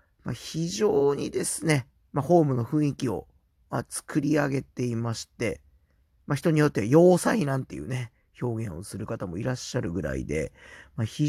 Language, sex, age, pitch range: Japanese, male, 40-59, 115-175 Hz